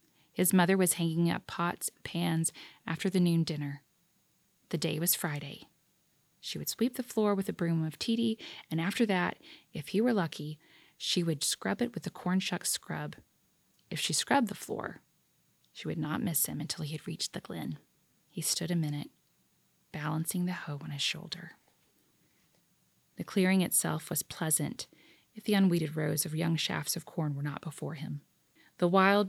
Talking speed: 180 wpm